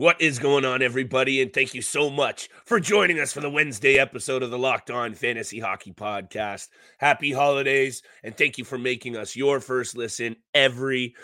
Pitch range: 125-150 Hz